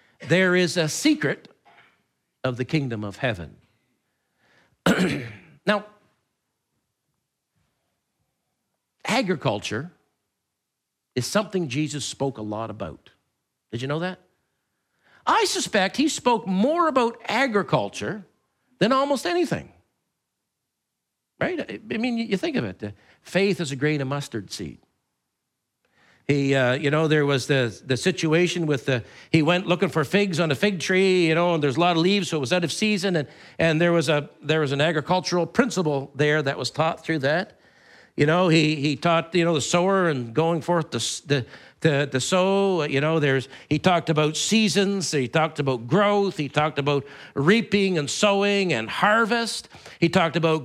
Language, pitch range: English, 145-205 Hz